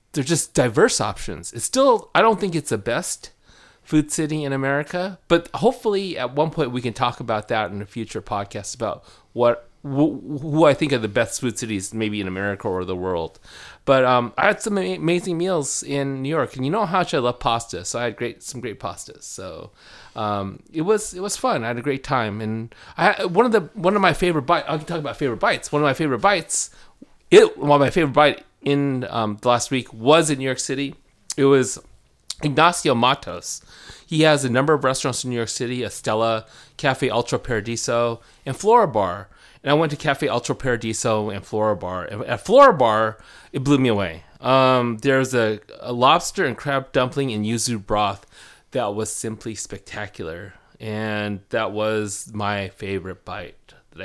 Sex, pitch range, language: male, 110-150 Hz, English